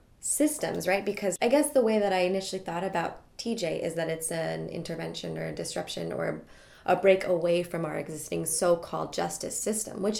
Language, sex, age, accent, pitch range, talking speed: English, female, 20-39, American, 170-210 Hz, 190 wpm